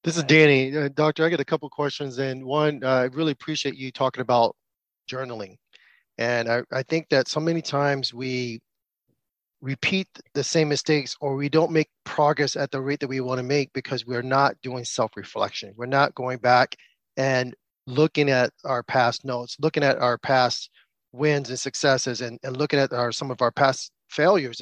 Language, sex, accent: English, male, American